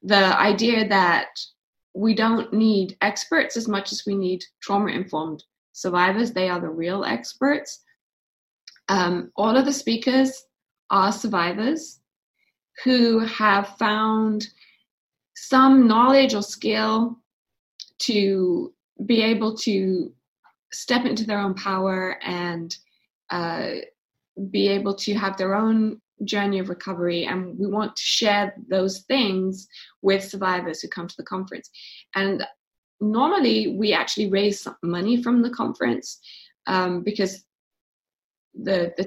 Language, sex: English, female